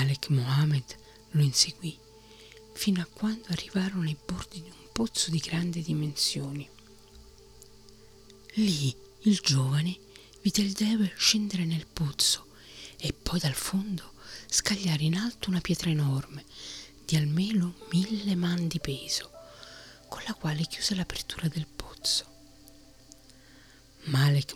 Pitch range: 135-175 Hz